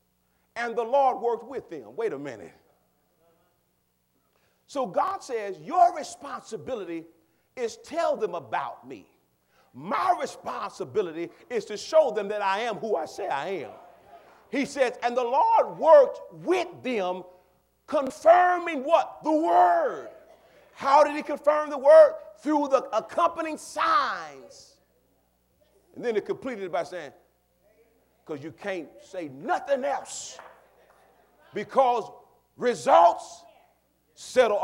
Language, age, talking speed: English, 40-59, 125 wpm